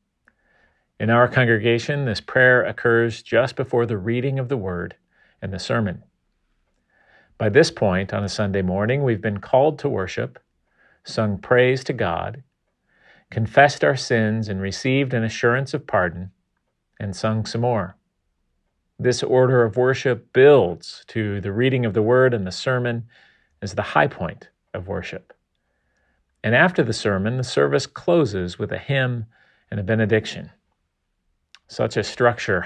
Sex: male